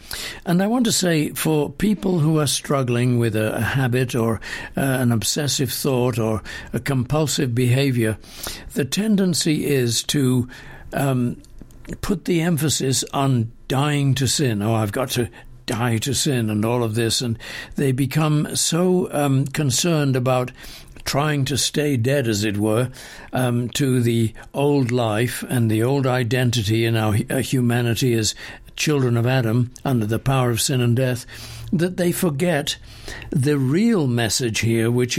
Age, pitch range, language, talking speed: 60-79, 120-150 Hz, English, 155 wpm